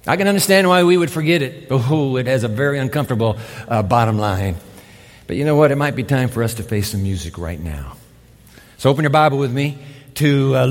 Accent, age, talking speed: American, 50-69, 230 wpm